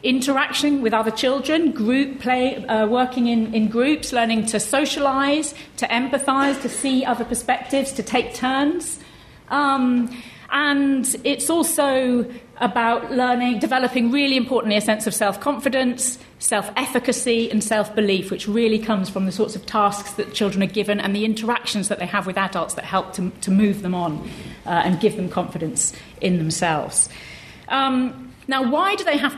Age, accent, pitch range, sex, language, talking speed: 40-59, British, 205-260 Hz, female, English, 160 wpm